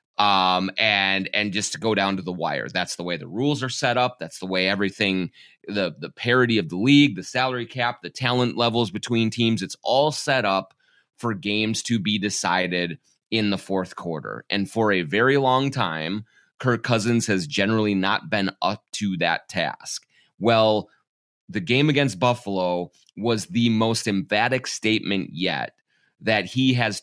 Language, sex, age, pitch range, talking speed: English, male, 30-49, 100-125 Hz, 175 wpm